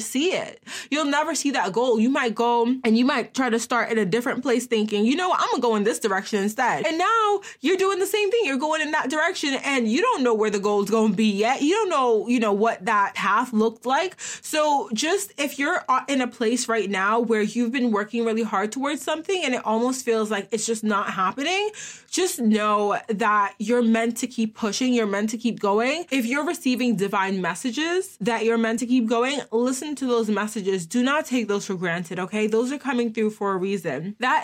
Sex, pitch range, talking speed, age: female, 210-275 Hz, 235 wpm, 20-39